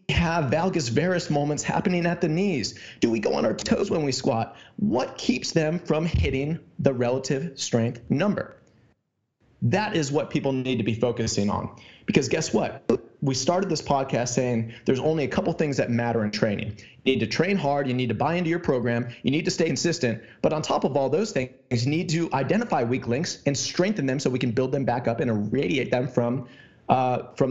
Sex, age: male, 30-49